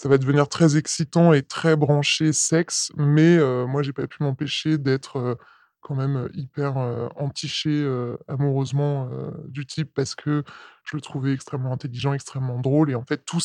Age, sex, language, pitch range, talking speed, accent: 20-39, female, French, 135-160 Hz, 185 wpm, French